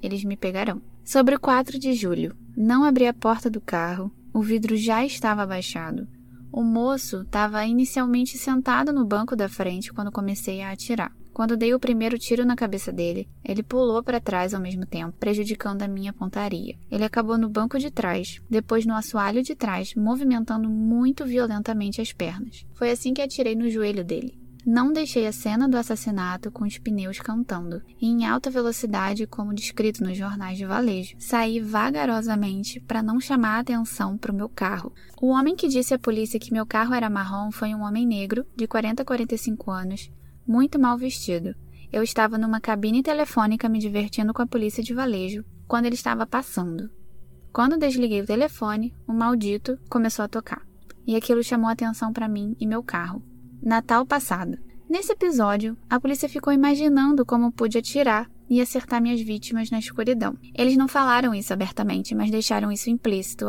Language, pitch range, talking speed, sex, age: Portuguese, 205-245 Hz, 180 wpm, female, 10-29